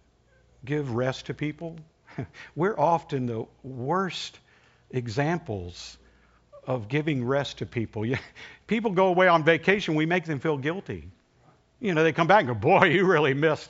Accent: American